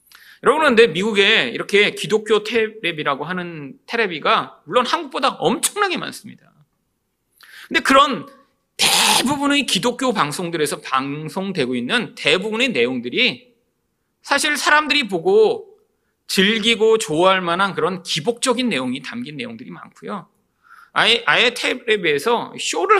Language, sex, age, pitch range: Korean, male, 40-59, 200-260 Hz